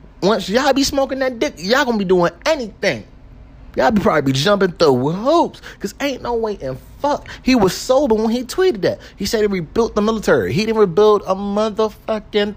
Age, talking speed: 30-49, 205 wpm